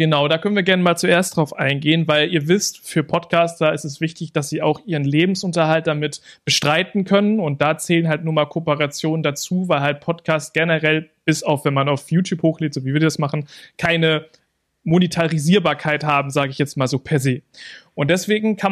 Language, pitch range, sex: German, 150-180 Hz, male